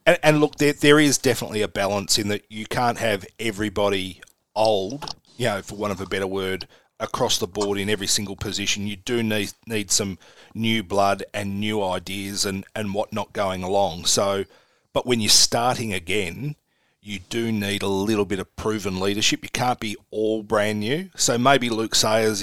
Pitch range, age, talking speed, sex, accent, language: 100-115 Hz, 40-59, 185 wpm, male, Australian, English